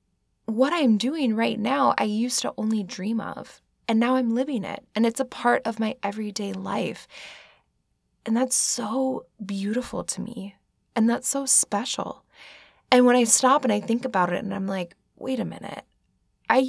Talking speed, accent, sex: 180 wpm, American, female